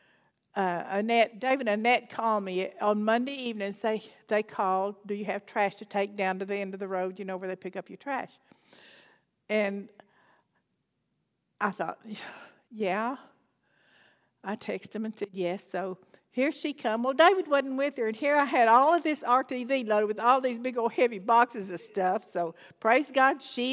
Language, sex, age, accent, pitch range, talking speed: English, female, 60-79, American, 210-260 Hz, 190 wpm